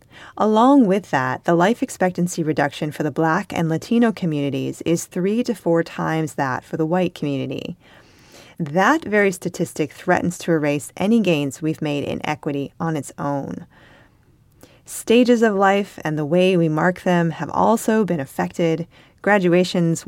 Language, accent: English, American